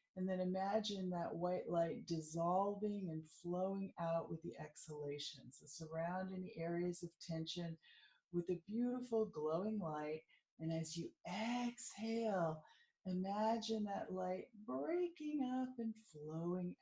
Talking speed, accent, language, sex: 120 wpm, American, English, female